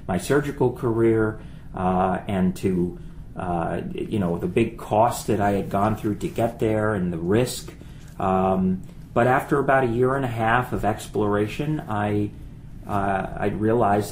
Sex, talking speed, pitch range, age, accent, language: male, 155 wpm, 100-115 Hz, 40-59, American, English